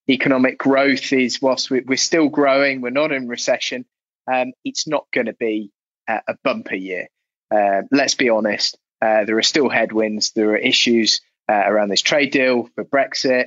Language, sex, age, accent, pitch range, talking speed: English, male, 20-39, British, 110-140 Hz, 185 wpm